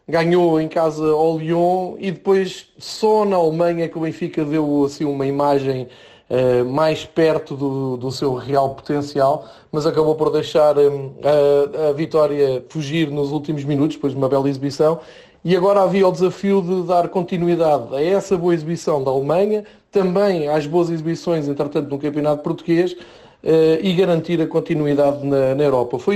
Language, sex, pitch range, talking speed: Portuguese, male, 145-180 Hz, 165 wpm